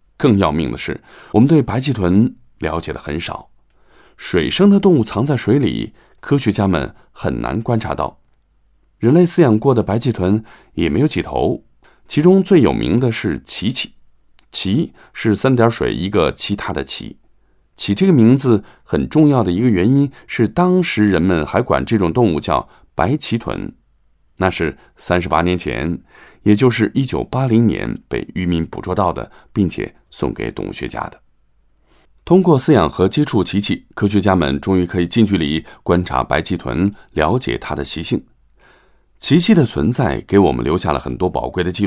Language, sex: English, male